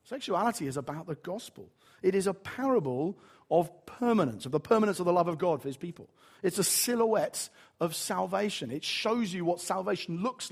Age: 40-59